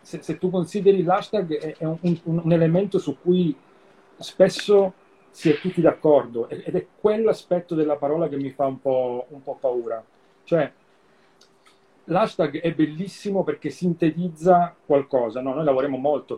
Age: 40-59